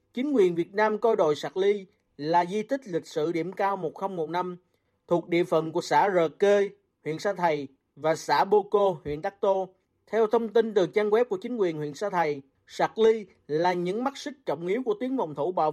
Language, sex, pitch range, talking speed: Vietnamese, male, 170-225 Hz, 220 wpm